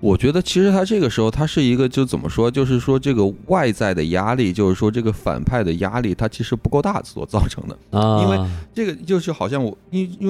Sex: male